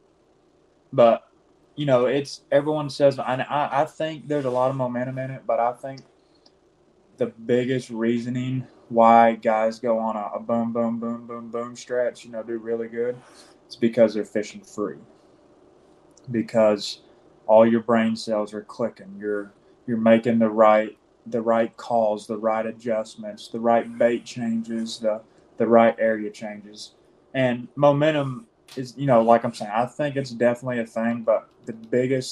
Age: 20-39